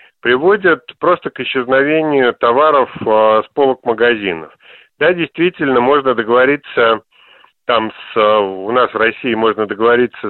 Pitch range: 115-145 Hz